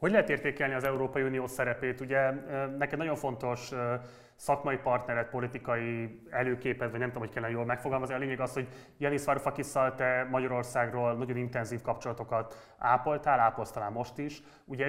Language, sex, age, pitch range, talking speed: Hungarian, male, 30-49, 120-140 Hz, 155 wpm